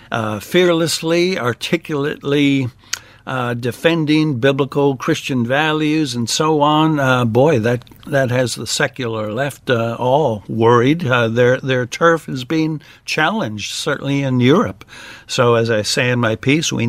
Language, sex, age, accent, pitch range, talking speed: English, male, 60-79, American, 115-145 Hz, 140 wpm